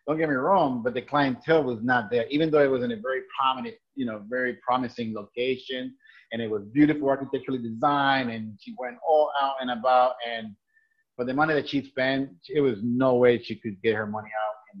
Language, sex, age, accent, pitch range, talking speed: English, male, 30-49, American, 120-145 Hz, 220 wpm